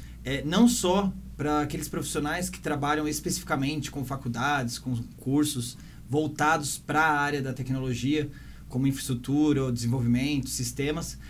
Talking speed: 120 wpm